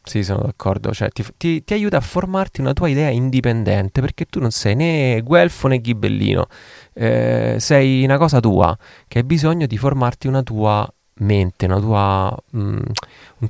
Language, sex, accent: Italian, male, native